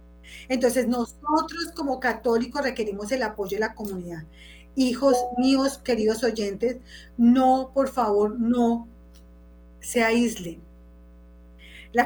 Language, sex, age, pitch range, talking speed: Spanish, female, 30-49, 170-250 Hz, 105 wpm